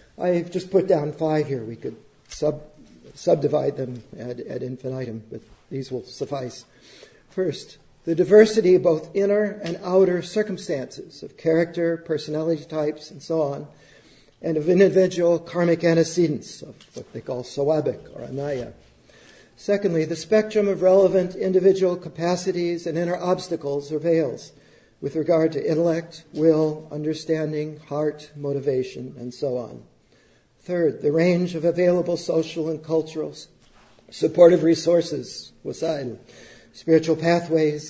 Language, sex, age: English, male, 50-69